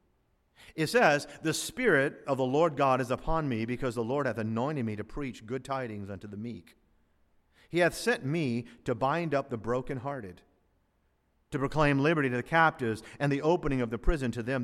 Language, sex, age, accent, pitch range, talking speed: English, male, 50-69, American, 105-165 Hz, 195 wpm